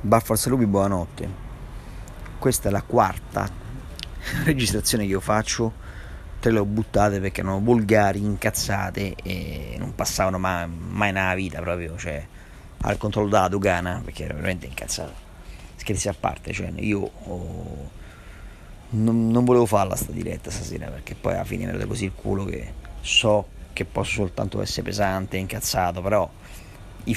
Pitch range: 95-110 Hz